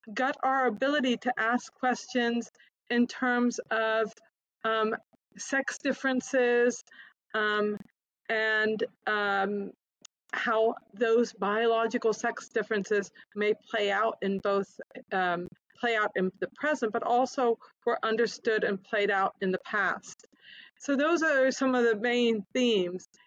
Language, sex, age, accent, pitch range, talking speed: English, female, 40-59, American, 195-235 Hz, 125 wpm